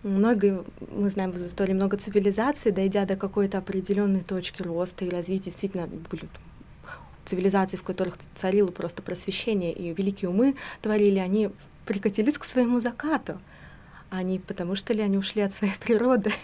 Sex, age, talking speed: female, 20-39, 145 wpm